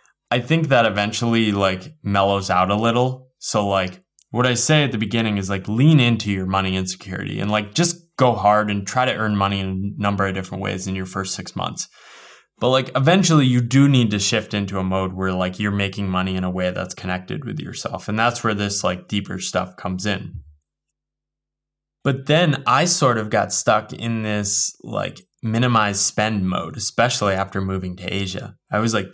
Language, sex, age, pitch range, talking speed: English, male, 20-39, 95-115 Hz, 200 wpm